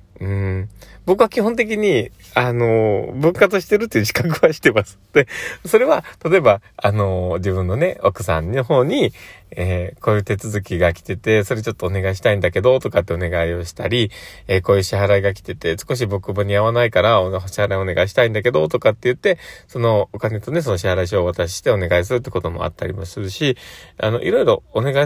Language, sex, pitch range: Japanese, male, 95-135 Hz